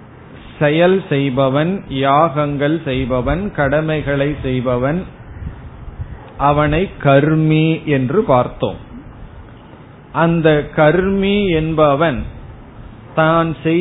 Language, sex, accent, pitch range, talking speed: Tamil, male, native, 130-170 Hz, 50 wpm